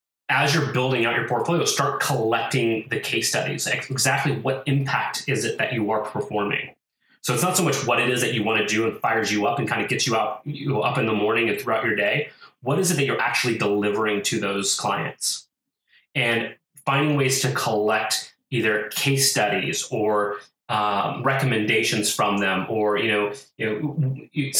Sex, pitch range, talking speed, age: male, 105-135 Hz, 195 wpm, 30-49